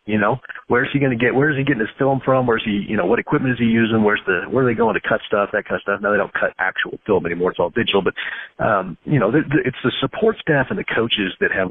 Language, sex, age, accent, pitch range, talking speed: English, male, 40-59, American, 100-125 Hz, 345 wpm